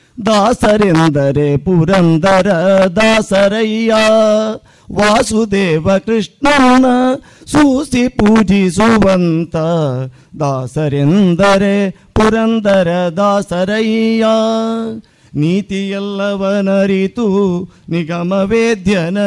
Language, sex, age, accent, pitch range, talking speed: Kannada, male, 50-69, native, 160-220 Hz, 35 wpm